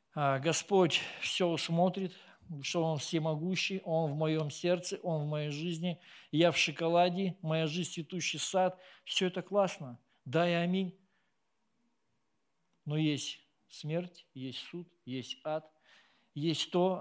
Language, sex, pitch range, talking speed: Russian, male, 145-175 Hz, 125 wpm